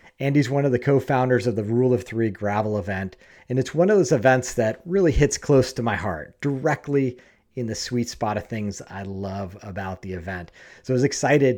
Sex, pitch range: male, 100-130 Hz